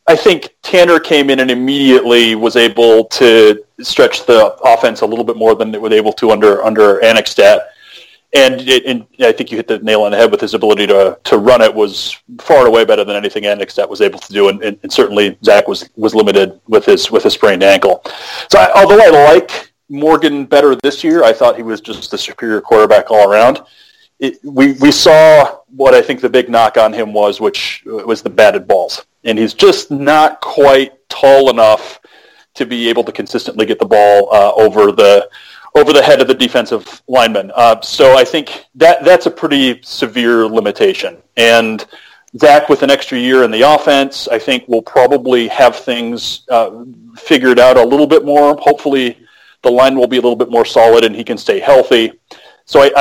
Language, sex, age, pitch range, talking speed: English, male, 30-49, 115-170 Hz, 205 wpm